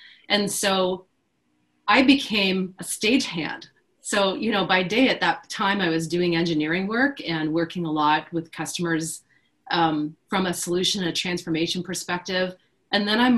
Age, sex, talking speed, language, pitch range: 30-49, female, 155 wpm, English, 170-210 Hz